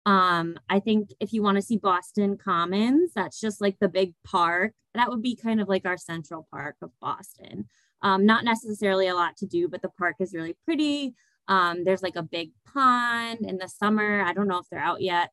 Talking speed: 220 wpm